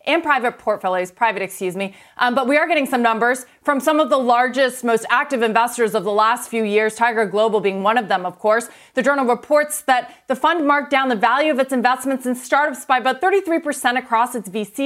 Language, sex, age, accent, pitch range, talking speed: English, female, 30-49, American, 205-265 Hz, 220 wpm